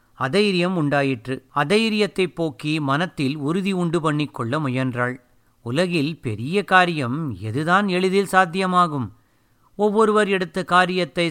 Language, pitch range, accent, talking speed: Tamil, 135-185 Hz, native, 95 wpm